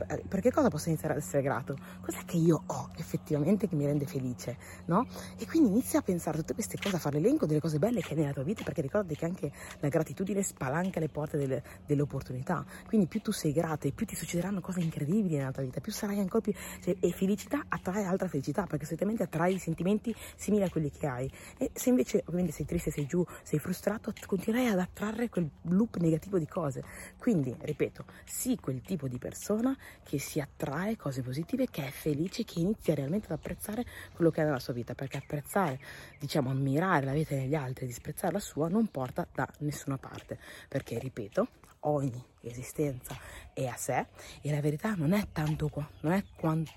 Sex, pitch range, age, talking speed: female, 140-190 Hz, 30-49, 210 wpm